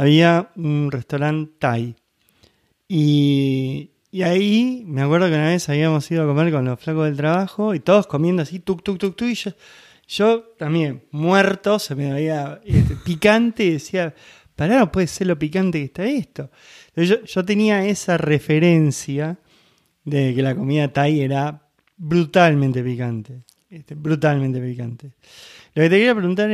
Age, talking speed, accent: 20-39, 165 wpm, Argentinian